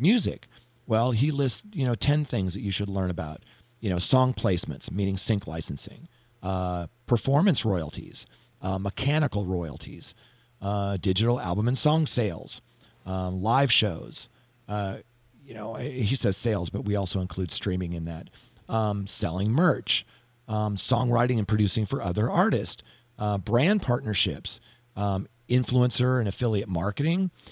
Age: 40-59